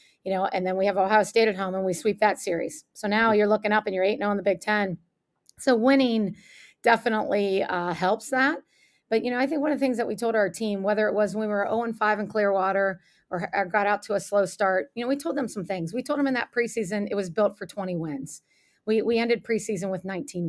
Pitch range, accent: 185-225 Hz, American